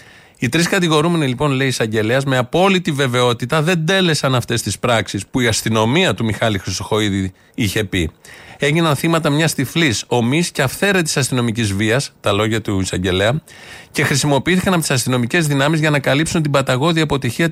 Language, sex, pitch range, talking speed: Greek, male, 120-160 Hz, 165 wpm